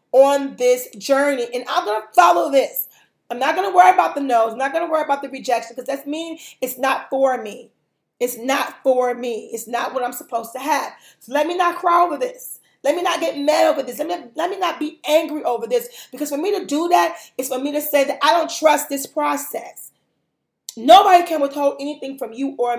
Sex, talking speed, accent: female, 235 wpm, American